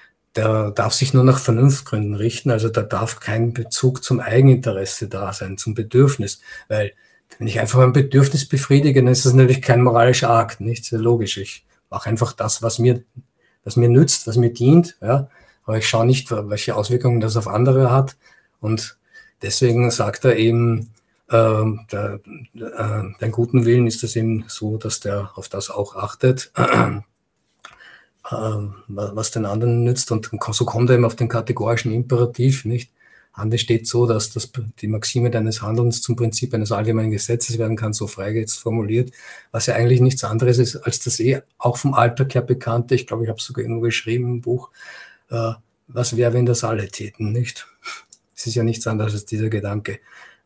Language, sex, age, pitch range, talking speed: German, male, 50-69, 110-125 Hz, 175 wpm